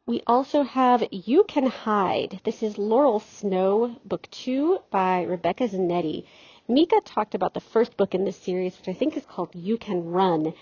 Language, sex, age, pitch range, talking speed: English, female, 40-59, 185-255 Hz, 180 wpm